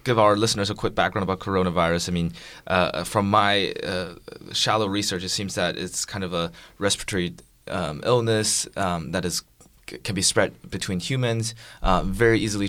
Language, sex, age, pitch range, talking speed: English, male, 20-39, 90-105 Hz, 180 wpm